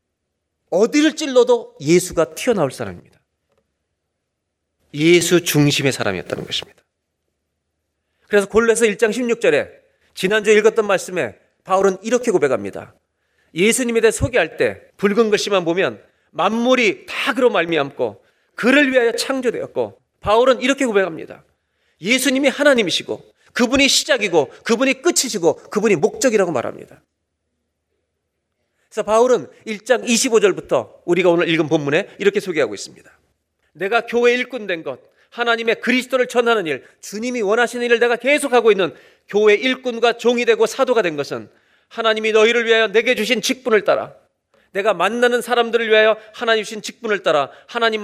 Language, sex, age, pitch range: Korean, male, 40-59, 170-245 Hz